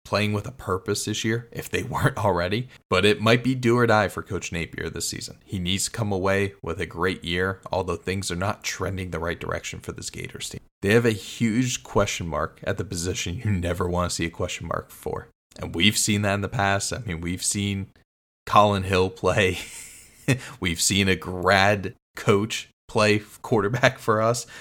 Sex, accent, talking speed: male, American, 205 wpm